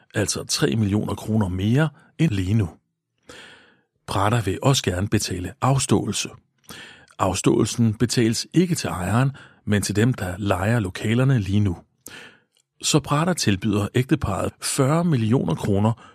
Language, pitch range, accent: Danish, 100-145 Hz, native